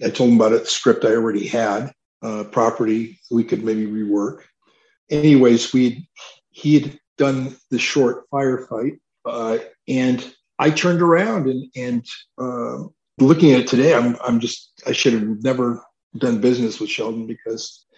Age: 50-69